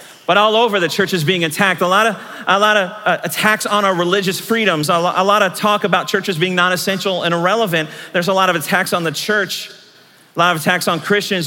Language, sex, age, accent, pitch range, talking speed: English, male, 40-59, American, 190-250 Hz, 230 wpm